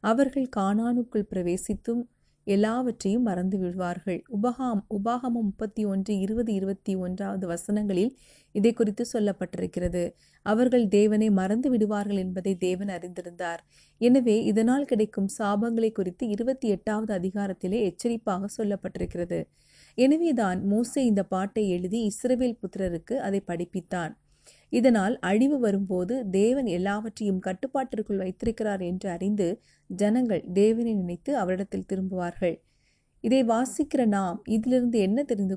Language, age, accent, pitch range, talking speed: Tamil, 30-49, native, 185-235 Hz, 105 wpm